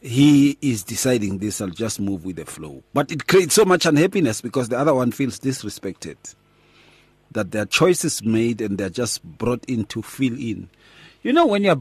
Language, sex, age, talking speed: English, male, 40-59, 200 wpm